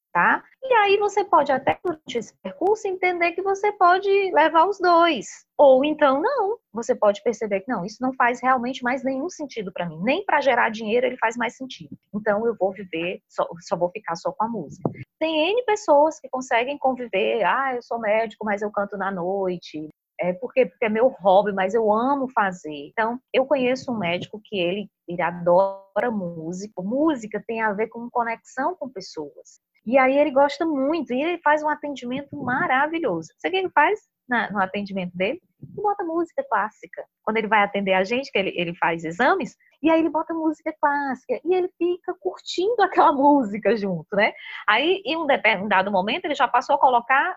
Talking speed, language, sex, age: 195 wpm, Portuguese, female, 20-39